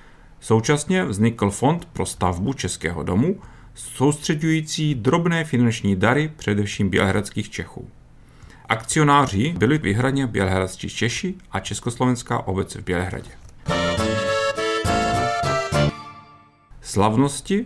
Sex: male